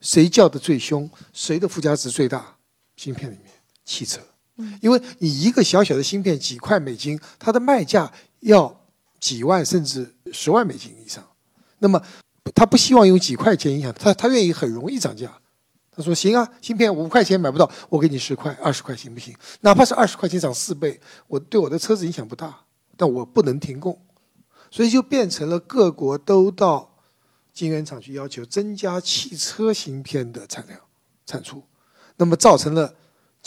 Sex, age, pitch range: male, 60-79, 140-200 Hz